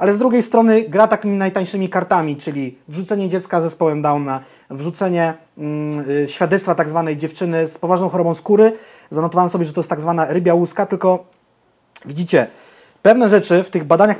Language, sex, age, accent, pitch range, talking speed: Portuguese, male, 30-49, Polish, 150-195 Hz, 170 wpm